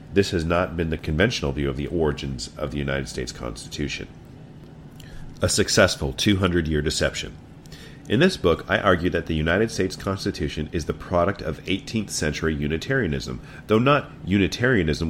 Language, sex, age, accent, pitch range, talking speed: English, male, 40-59, American, 75-100 Hz, 155 wpm